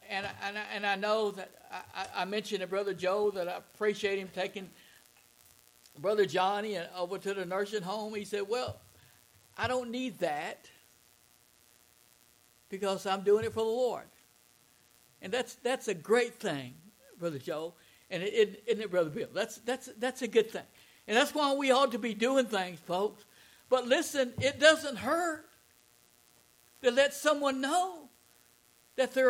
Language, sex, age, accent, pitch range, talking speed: English, male, 60-79, American, 205-330 Hz, 170 wpm